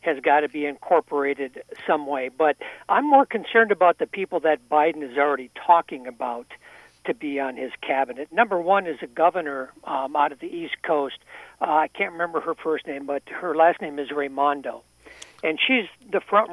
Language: English